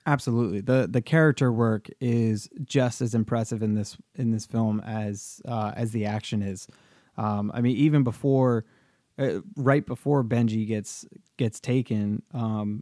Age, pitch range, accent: 20-39, 110-125 Hz, American